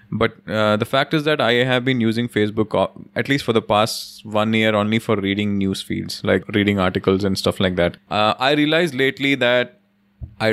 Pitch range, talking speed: 100-115 Hz, 205 wpm